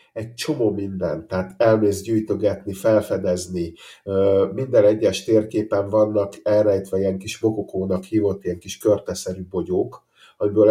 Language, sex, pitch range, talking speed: Hungarian, male, 95-110 Hz, 120 wpm